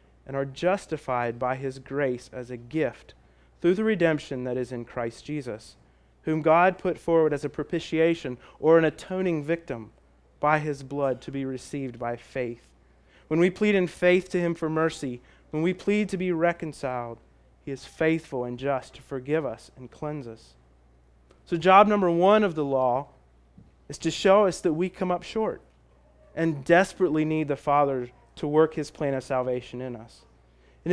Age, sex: 30-49, male